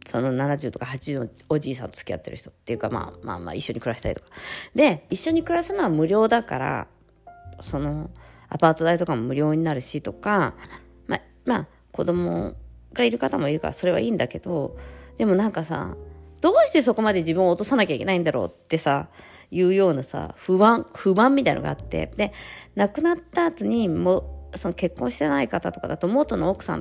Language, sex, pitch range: Japanese, female, 125-200 Hz